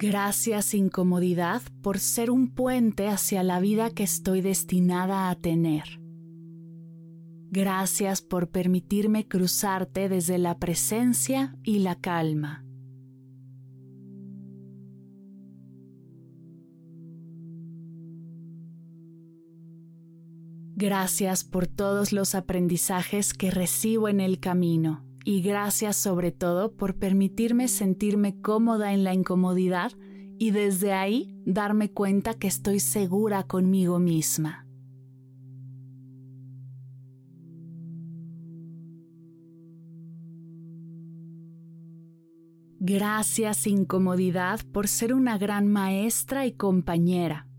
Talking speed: 80 wpm